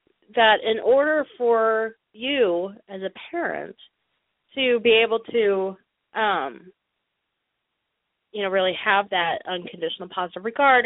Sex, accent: female, American